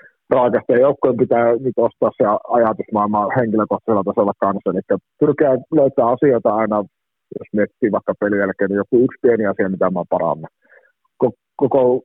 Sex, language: male, Finnish